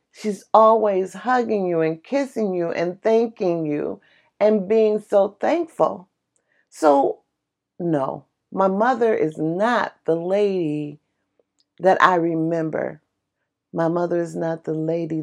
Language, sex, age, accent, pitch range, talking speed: English, female, 40-59, American, 175-260 Hz, 120 wpm